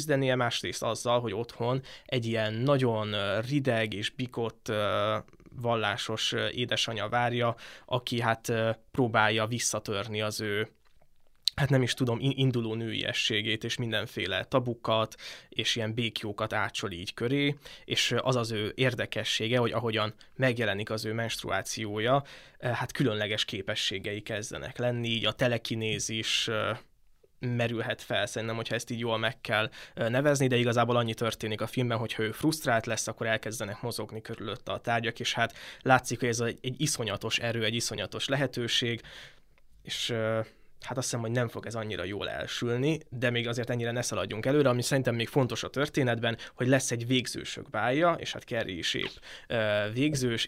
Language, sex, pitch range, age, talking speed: Hungarian, male, 110-125 Hz, 20-39, 150 wpm